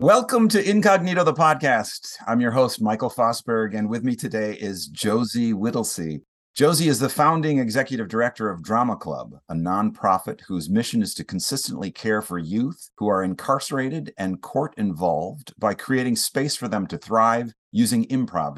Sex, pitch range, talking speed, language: male, 95-135 Hz, 165 wpm, English